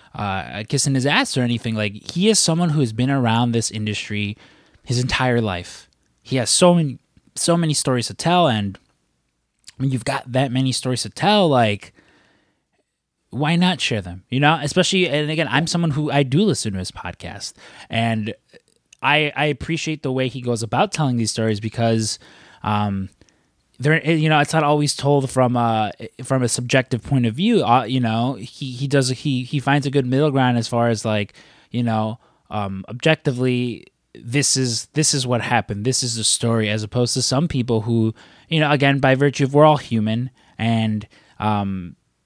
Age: 20-39